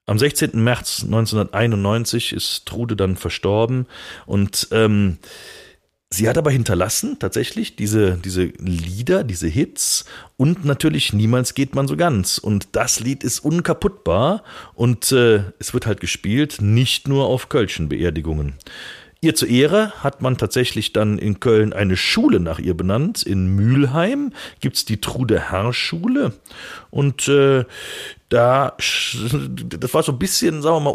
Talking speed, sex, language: 145 wpm, male, German